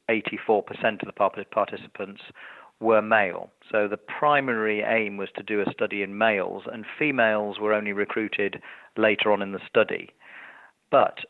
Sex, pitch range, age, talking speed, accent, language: male, 105-120 Hz, 40-59, 145 wpm, British, English